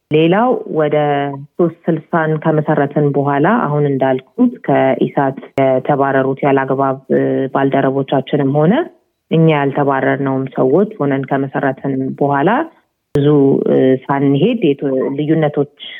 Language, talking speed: Amharic, 80 wpm